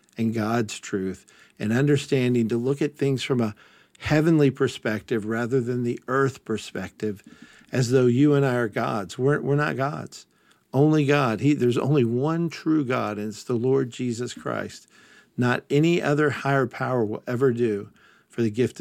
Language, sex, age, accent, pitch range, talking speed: English, male, 50-69, American, 110-140 Hz, 170 wpm